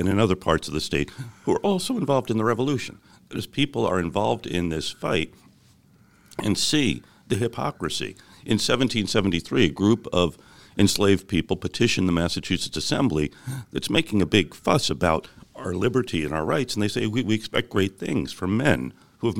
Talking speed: 185 wpm